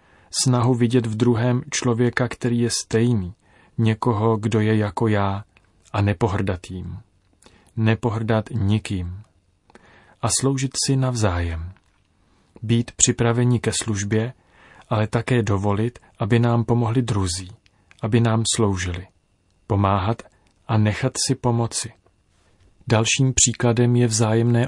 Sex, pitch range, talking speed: male, 95-115 Hz, 105 wpm